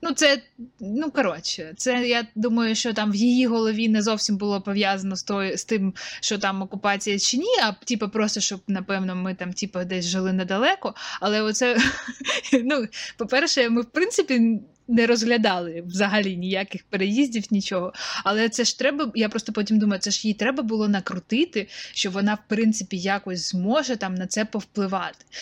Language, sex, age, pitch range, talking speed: Ukrainian, female, 20-39, 195-240 Hz, 170 wpm